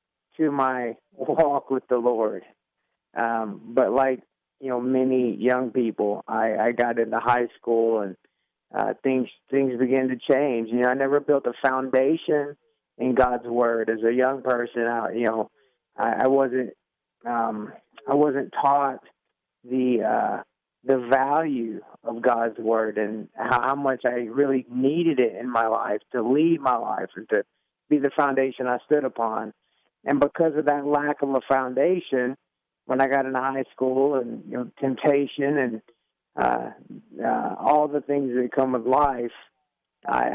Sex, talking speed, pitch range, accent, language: male, 165 wpm, 120-140 Hz, American, English